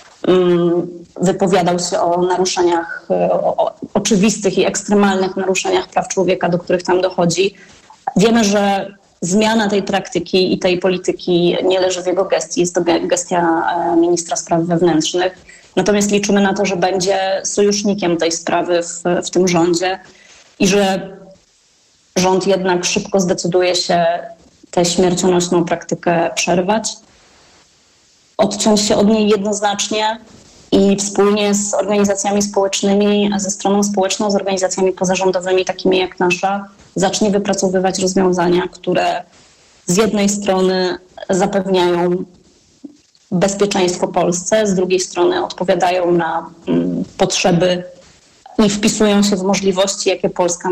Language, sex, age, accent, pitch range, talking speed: Polish, female, 30-49, native, 180-200 Hz, 120 wpm